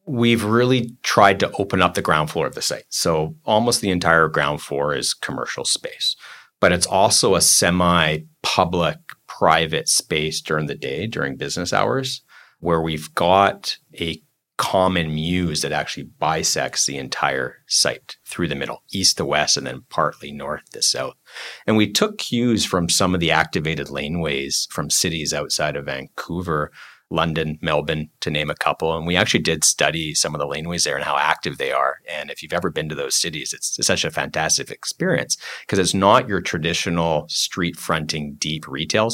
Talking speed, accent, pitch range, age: 180 wpm, American, 75-95 Hz, 30-49